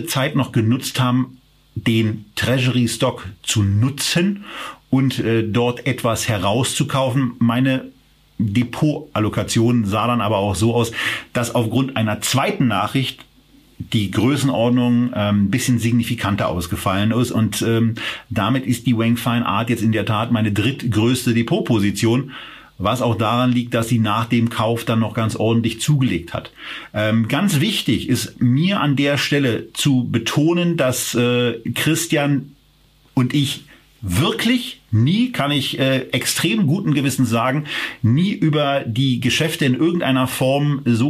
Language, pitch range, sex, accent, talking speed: German, 115-140 Hz, male, German, 140 wpm